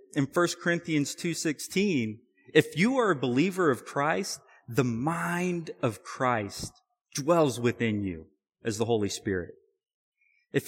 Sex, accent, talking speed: male, American, 130 wpm